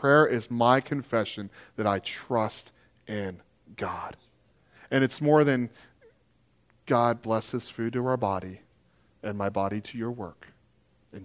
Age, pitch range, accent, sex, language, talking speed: 40-59, 110-170 Hz, American, male, English, 140 wpm